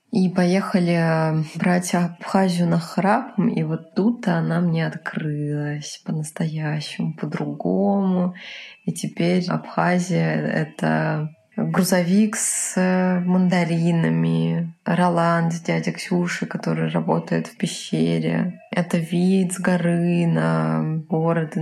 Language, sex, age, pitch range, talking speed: Russian, female, 20-39, 160-185 Hz, 95 wpm